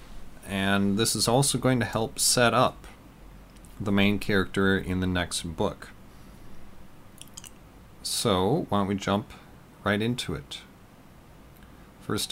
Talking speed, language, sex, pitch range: 120 wpm, English, male, 90-110 Hz